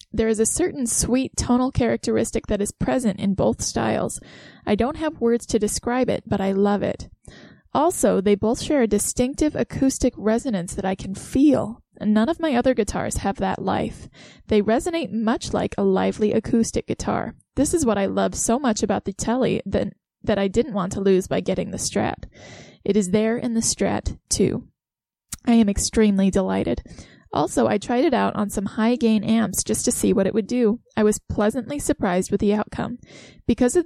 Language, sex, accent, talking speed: English, female, American, 195 wpm